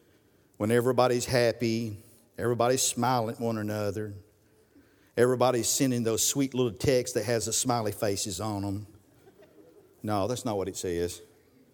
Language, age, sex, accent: English, 50-69, male, American